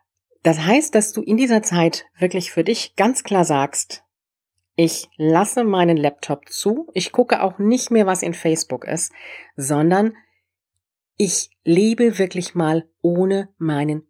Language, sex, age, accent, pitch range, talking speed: German, female, 40-59, German, 140-195 Hz, 145 wpm